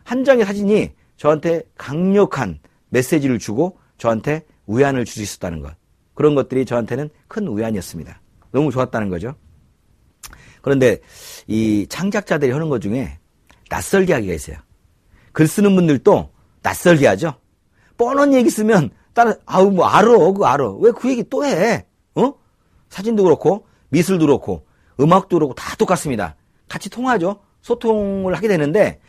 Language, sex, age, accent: Korean, male, 40-59, native